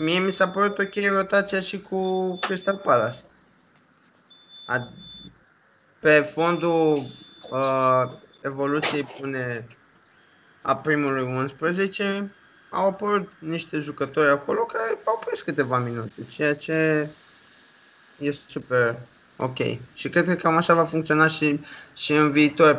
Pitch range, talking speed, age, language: 135-170 Hz, 120 wpm, 20-39, Romanian